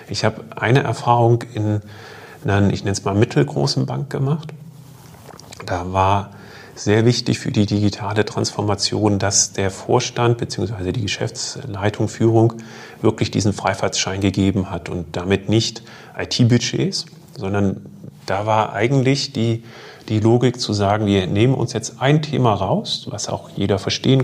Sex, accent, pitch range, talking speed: male, German, 100-120 Hz, 140 wpm